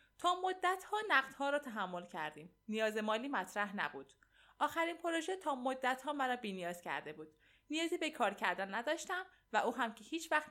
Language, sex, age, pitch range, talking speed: Persian, female, 20-39, 195-310 Hz, 175 wpm